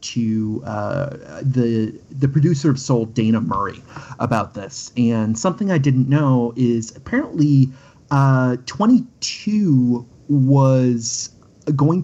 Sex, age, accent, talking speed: male, 30-49, American, 110 wpm